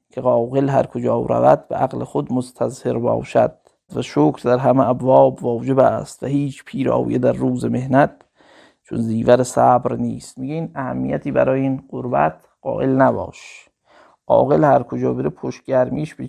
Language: Persian